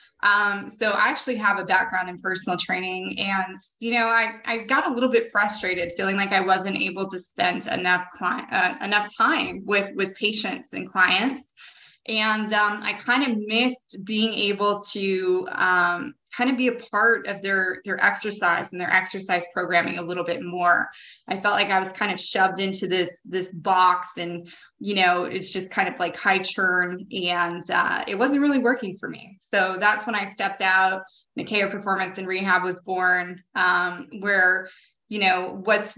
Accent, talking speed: American, 185 wpm